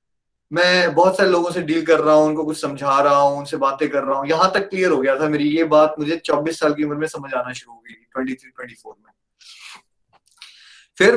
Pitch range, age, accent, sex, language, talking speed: 150-220 Hz, 30-49, native, male, Hindi, 230 wpm